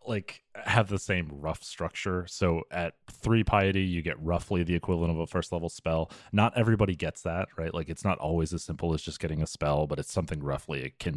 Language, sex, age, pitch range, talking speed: English, male, 30-49, 75-95 Hz, 220 wpm